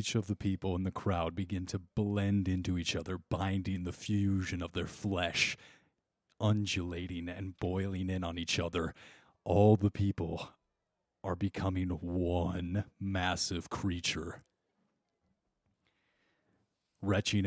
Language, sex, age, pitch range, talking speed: English, male, 30-49, 90-105 Hz, 120 wpm